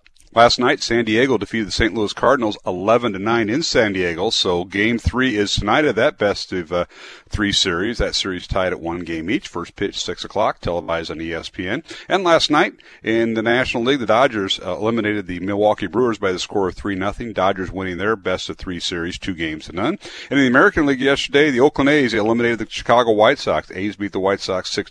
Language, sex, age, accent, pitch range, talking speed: English, male, 40-59, American, 90-120 Hz, 225 wpm